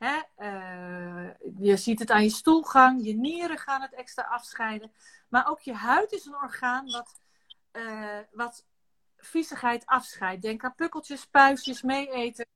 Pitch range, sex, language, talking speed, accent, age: 220-280 Hz, female, Dutch, 150 wpm, Dutch, 40-59